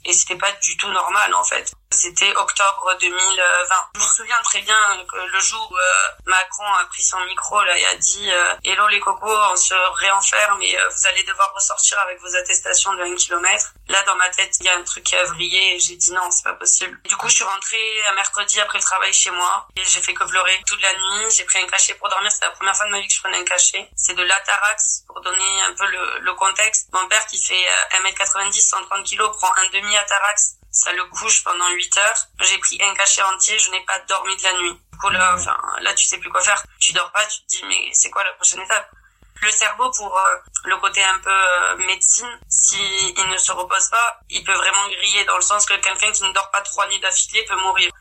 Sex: female